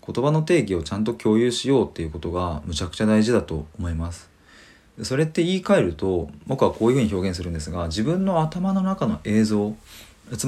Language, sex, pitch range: Japanese, male, 85-125 Hz